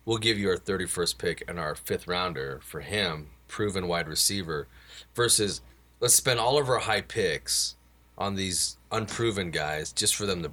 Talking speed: 175 wpm